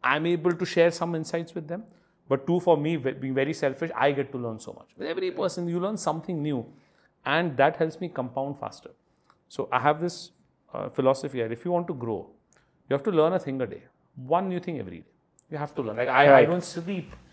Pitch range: 135-165 Hz